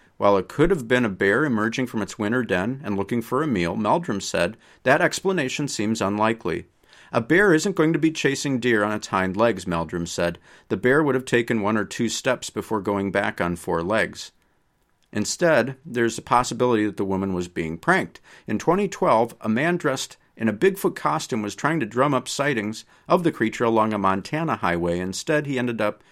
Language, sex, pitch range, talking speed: English, male, 105-150 Hz, 200 wpm